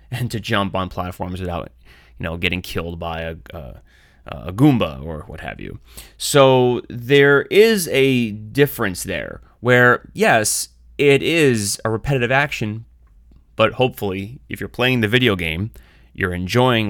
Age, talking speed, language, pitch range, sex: 30-49, 150 wpm, English, 90-130 Hz, male